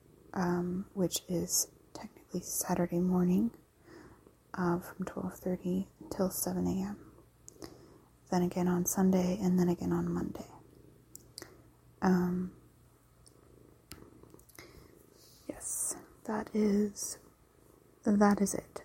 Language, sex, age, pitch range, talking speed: English, female, 20-39, 185-210 Hz, 90 wpm